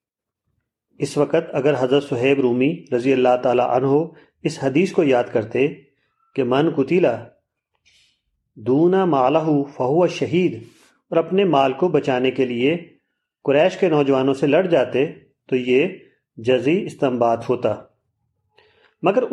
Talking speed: 125 wpm